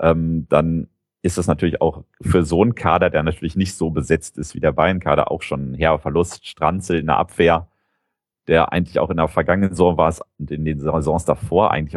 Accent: German